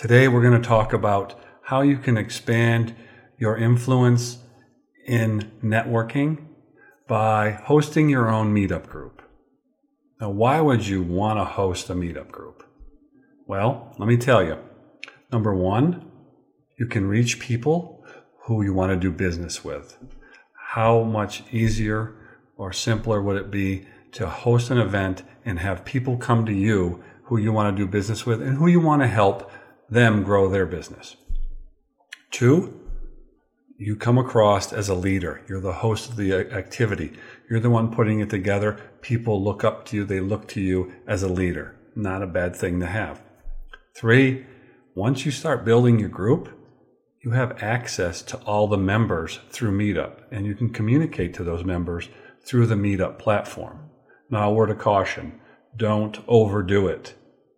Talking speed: 160 wpm